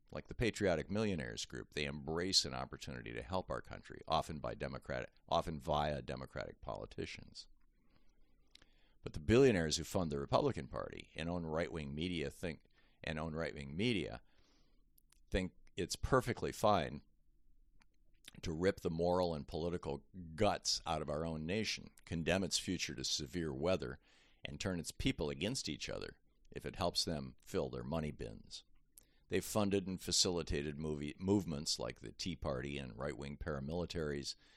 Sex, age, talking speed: male, 50-69, 155 wpm